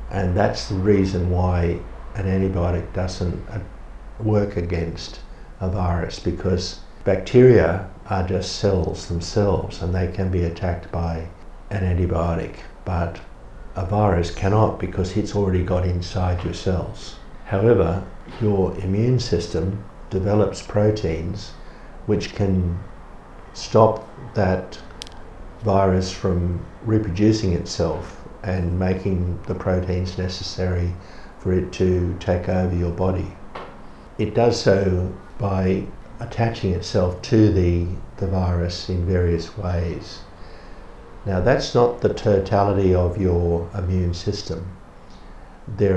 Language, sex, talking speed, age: English, male, 110 wpm, 60-79